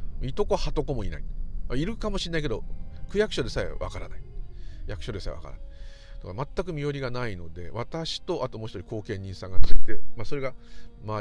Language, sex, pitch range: Japanese, male, 80-120 Hz